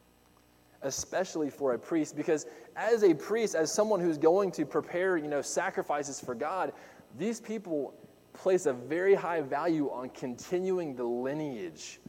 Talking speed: 150 wpm